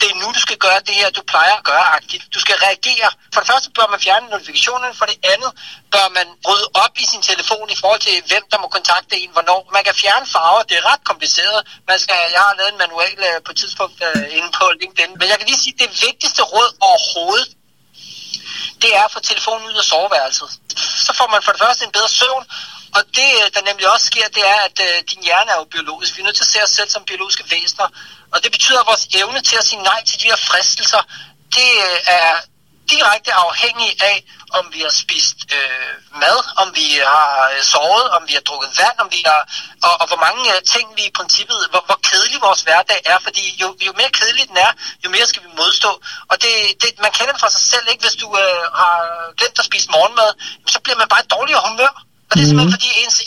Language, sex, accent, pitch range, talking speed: Danish, male, native, 190-235 Hz, 235 wpm